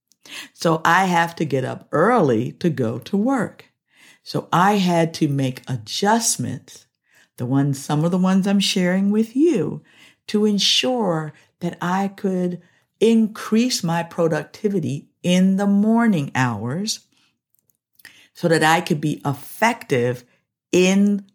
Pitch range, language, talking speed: 140-200 Hz, English, 130 wpm